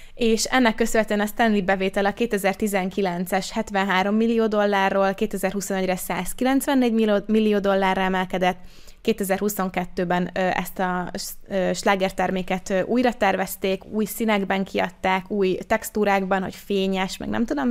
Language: Hungarian